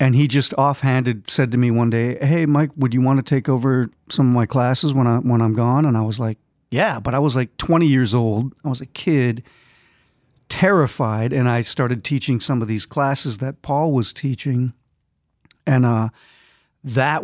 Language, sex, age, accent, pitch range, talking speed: English, male, 40-59, American, 115-140 Hz, 200 wpm